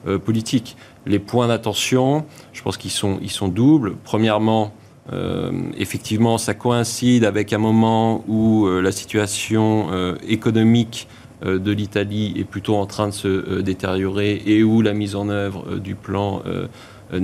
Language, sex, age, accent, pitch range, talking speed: French, male, 30-49, French, 100-115 Hz, 160 wpm